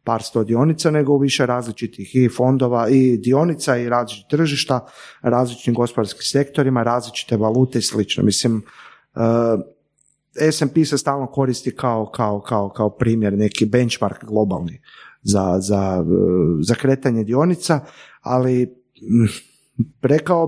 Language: Croatian